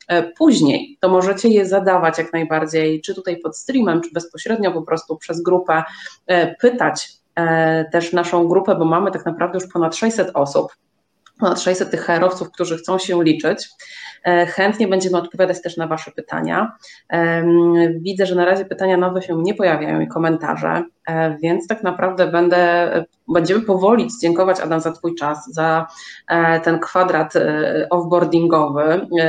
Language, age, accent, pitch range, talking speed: Polish, 30-49, native, 160-180 Hz, 145 wpm